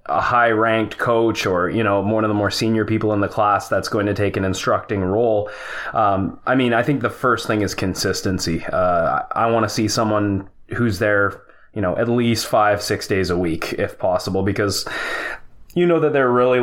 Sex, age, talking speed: male, 20-39, 210 wpm